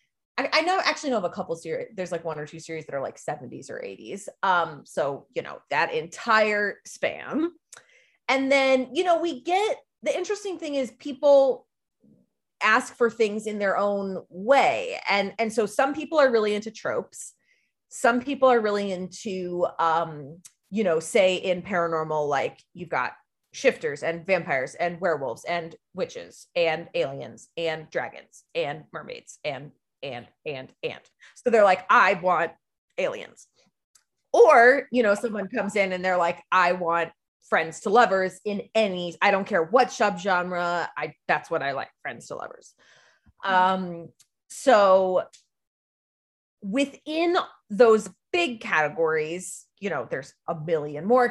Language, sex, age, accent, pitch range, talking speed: English, female, 30-49, American, 175-260 Hz, 155 wpm